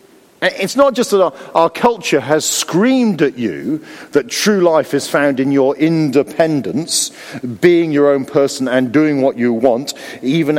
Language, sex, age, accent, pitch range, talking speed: English, male, 50-69, British, 140-215 Hz, 165 wpm